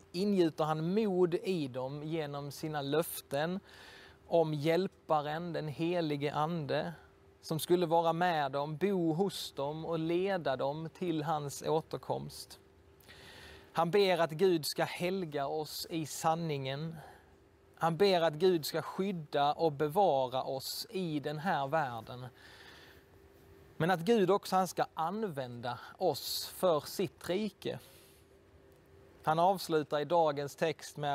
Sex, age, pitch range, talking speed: male, 20-39, 140-180 Hz, 125 wpm